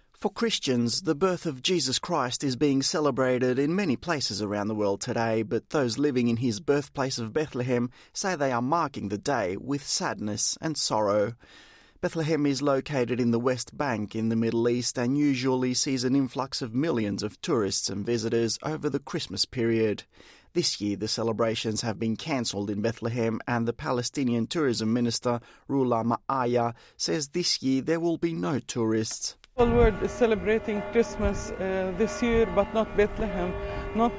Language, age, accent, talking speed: English, 30-49, Australian, 170 wpm